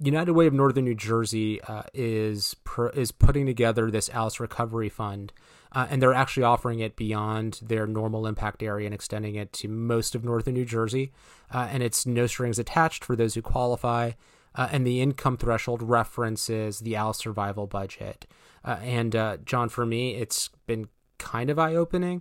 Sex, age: male, 30-49